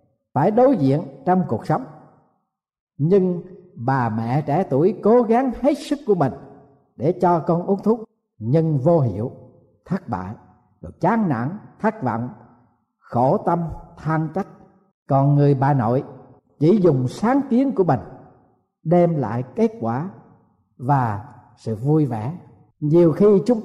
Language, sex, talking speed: Vietnamese, male, 145 wpm